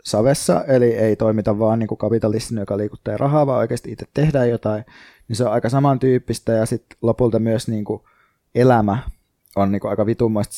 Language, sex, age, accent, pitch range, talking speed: Finnish, male, 20-39, native, 105-120 Hz, 170 wpm